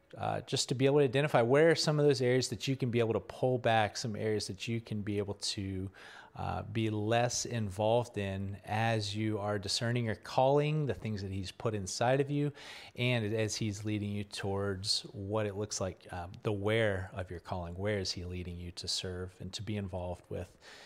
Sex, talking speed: male, 220 wpm